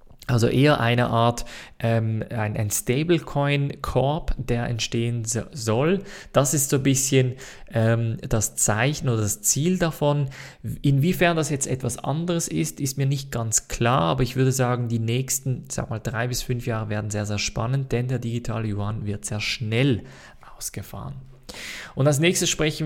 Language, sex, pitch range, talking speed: German, male, 115-145 Hz, 165 wpm